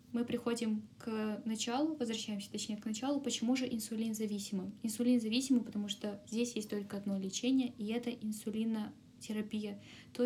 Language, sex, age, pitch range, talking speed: Russian, female, 10-29, 205-245 Hz, 145 wpm